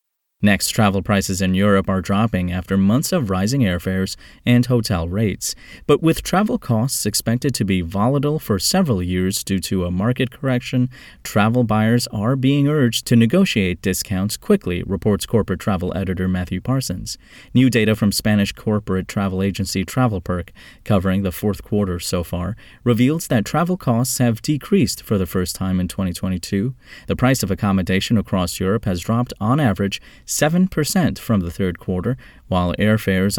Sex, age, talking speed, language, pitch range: male, 30-49, 160 wpm, English, 95-125 Hz